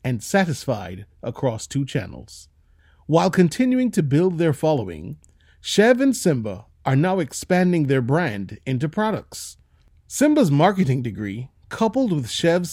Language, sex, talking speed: English, male, 125 wpm